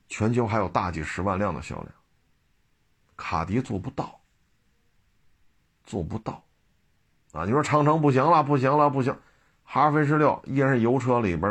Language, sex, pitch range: Chinese, male, 100-135 Hz